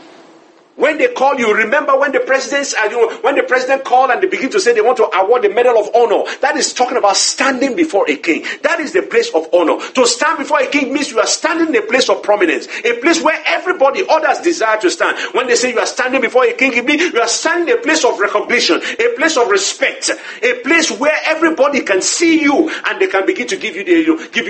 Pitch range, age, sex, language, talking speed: 250-360 Hz, 50-69, male, English, 250 wpm